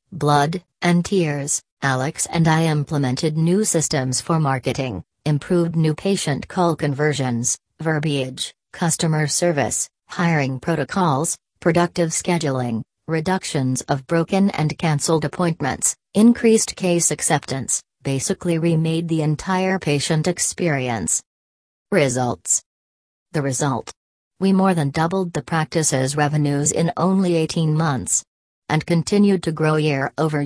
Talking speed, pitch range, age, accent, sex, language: 115 wpm, 140-170 Hz, 40-59, American, female, English